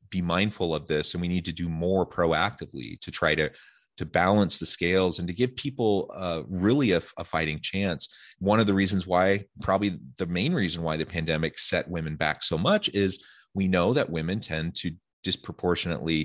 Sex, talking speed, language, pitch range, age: male, 195 wpm, English, 80-100 Hz, 30-49